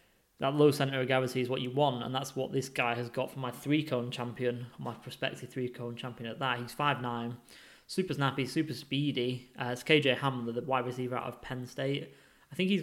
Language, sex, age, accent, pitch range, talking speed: English, male, 10-29, British, 125-135 Hz, 215 wpm